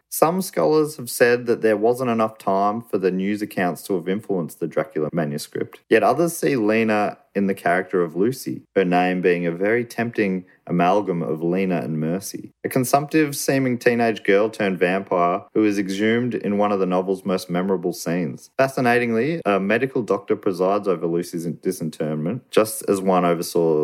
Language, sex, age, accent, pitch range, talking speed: English, male, 30-49, Australian, 85-120 Hz, 165 wpm